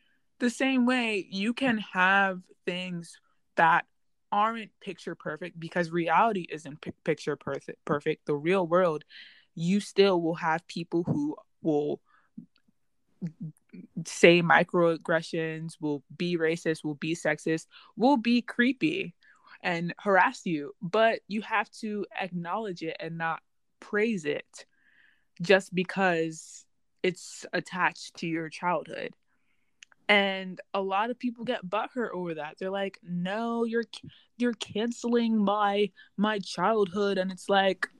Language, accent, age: English, American, 20-39